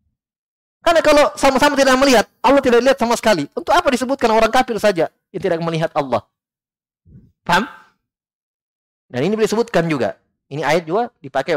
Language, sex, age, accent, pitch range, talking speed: Indonesian, male, 30-49, native, 125-175 Hz, 150 wpm